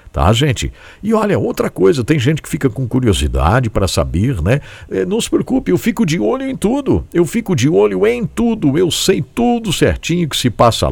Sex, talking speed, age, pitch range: male, 210 wpm, 60-79, 90-140 Hz